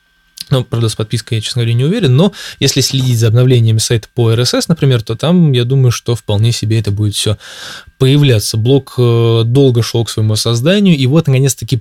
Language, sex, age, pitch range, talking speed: Russian, male, 20-39, 115-140 Hz, 195 wpm